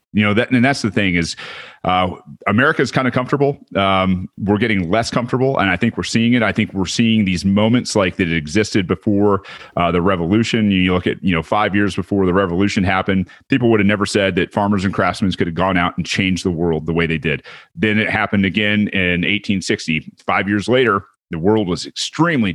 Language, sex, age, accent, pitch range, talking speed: English, male, 30-49, American, 90-110 Hz, 215 wpm